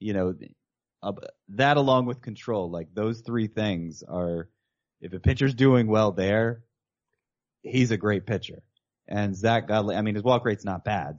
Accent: American